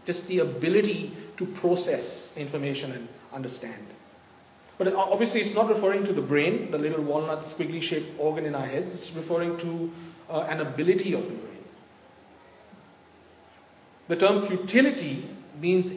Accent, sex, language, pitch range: Indian, male, English, 165-200 Hz